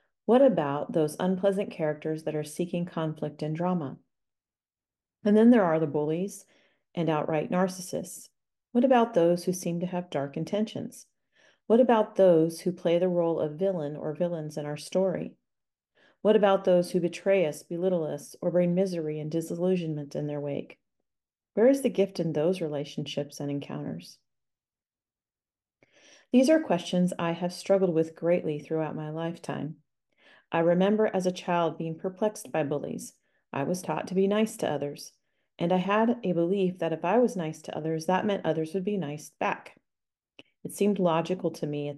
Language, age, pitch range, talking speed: English, 40-59, 155-195 Hz, 175 wpm